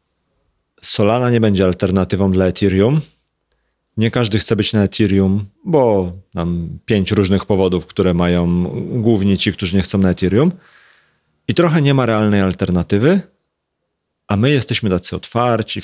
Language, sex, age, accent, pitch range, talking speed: Polish, male, 30-49, native, 95-115 Hz, 140 wpm